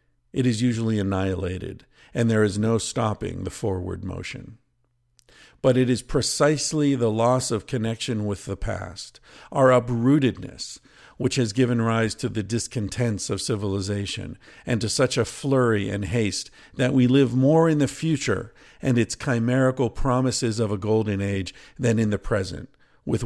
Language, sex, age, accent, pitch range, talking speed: English, male, 50-69, American, 115-140 Hz, 155 wpm